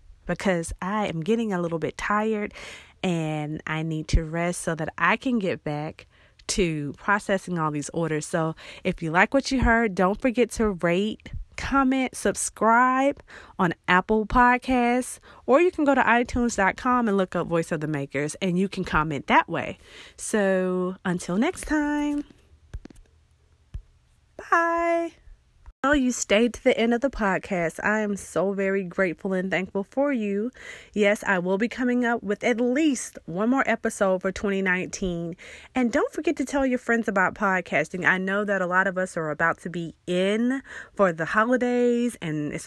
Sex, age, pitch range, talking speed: female, 30-49, 175-245 Hz, 170 wpm